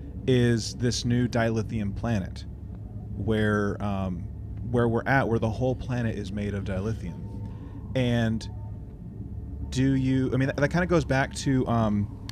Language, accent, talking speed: English, American, 150 wpm